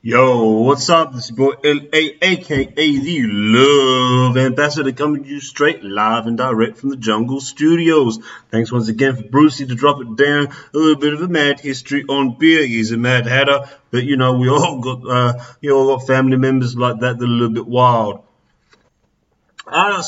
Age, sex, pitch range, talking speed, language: 30-49, male, 110-135 Hz, 195 wpm, English